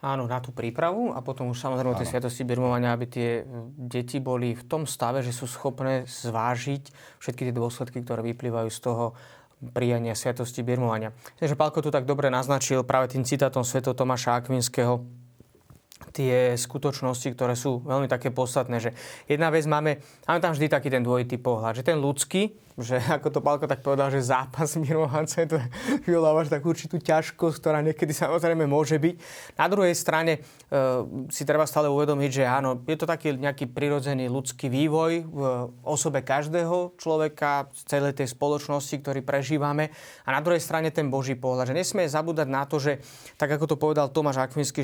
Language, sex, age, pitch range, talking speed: Slovak, male, 20-39, 130-155 Hz, 175 wpm